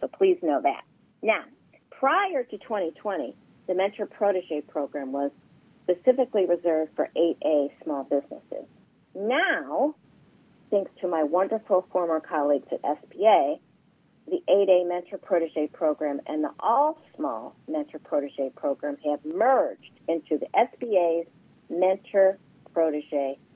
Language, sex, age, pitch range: English, female, 50-69, 150-205 Hz